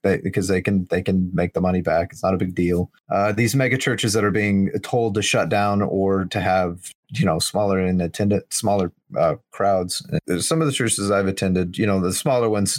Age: 30-49